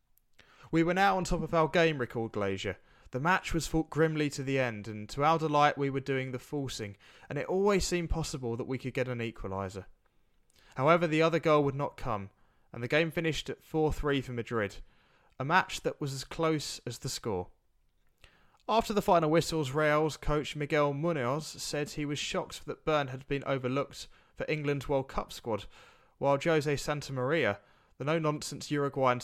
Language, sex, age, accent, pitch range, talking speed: English, male, 20-39, British, 120-160 Hz, 185 wpm